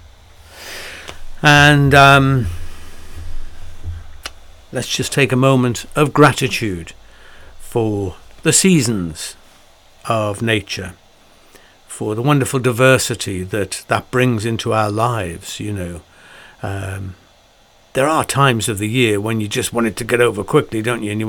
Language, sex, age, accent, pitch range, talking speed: English, male, 60-79, British, 95-125 Hz, 130 wpm